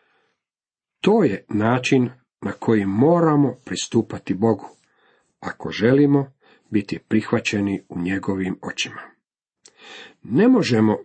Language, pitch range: Croatian, 105-140 Hz